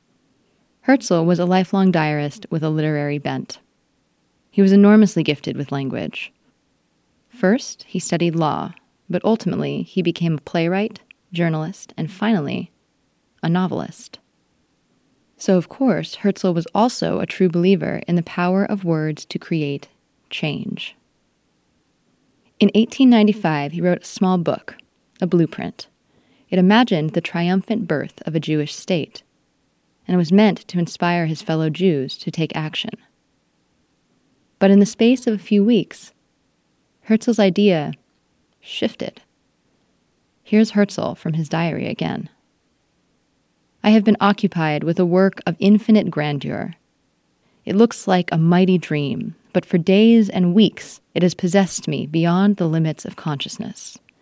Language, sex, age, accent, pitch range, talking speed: English, female, 20-39, American, 165-210 Hz, 135 wpm